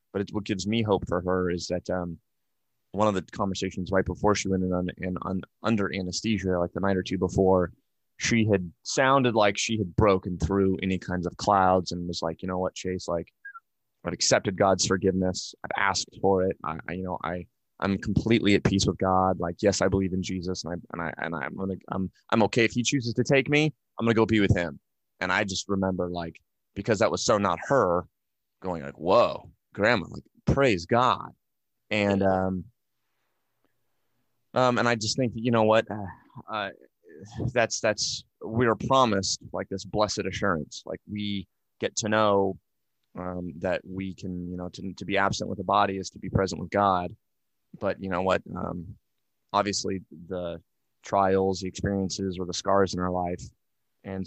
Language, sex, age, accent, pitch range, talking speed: English, male, 20-39, American, 90-105 Hz, 195 wpm